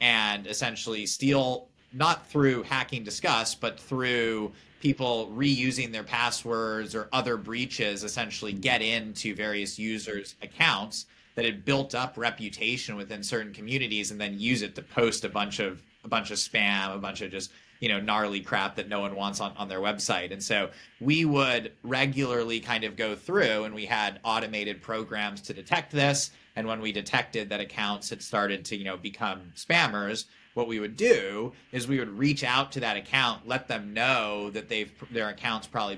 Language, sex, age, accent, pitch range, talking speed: English, male, 30-49, American, 105-125 Hz, 180 wpm